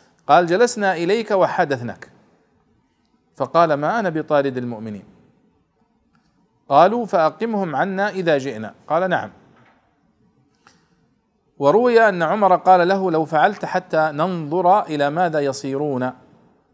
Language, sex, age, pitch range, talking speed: Arabic, male, 40-59, 125-170 Hz, 100 wpm